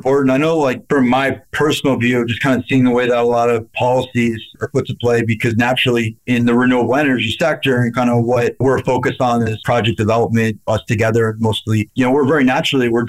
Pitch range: 115-130 Hz